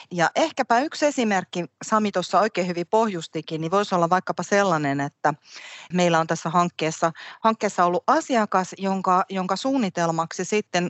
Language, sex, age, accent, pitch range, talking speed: Finnish, female, 30-49, native, 155-200 Hz, 145 wpm